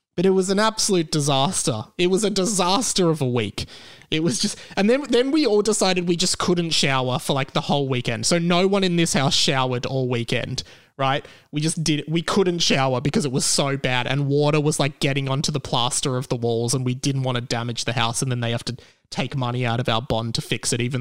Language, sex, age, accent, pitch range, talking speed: English, male, 20-39, Australian, 130-180 Hz, 245 wpm